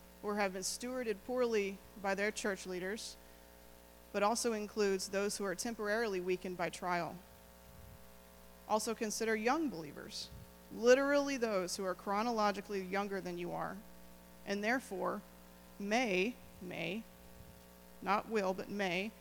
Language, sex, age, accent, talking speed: English, female, 20-39, American, 125 wpm